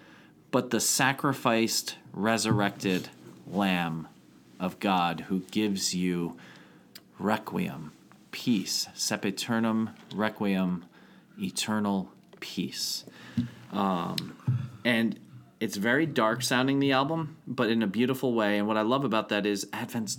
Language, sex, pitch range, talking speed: English, male, 100-130 Hz, 115 wpm